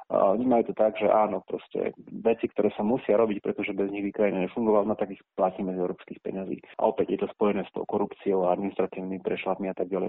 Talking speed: 215 wpm